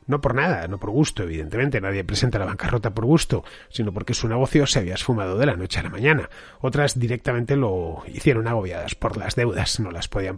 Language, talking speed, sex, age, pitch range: Spanish, 215 wpm, male, 30-49, 100-140 Hz